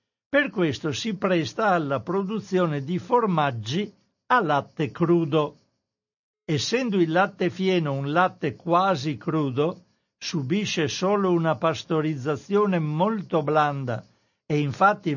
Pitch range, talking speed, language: 145-200 Hz, 105 wpm, Italian